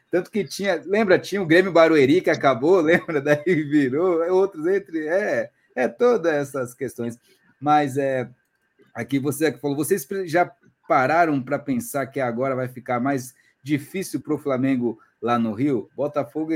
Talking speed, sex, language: 155 wpm, male, Portuguese